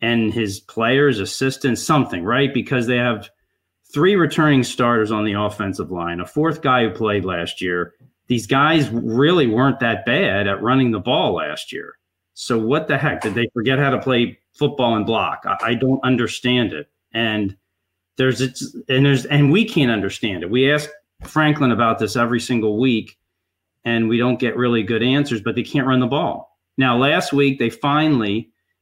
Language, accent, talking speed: English, American, 185 wpm